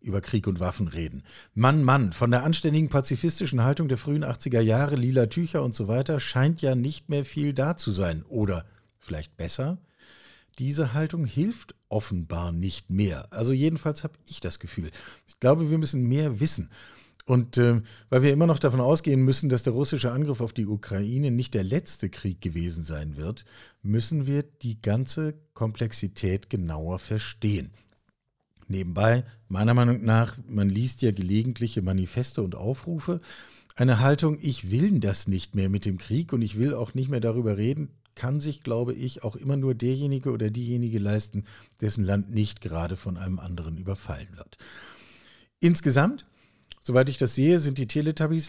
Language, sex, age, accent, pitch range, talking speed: German, male, 50-69, German, 105-145 Hz, 170 wpm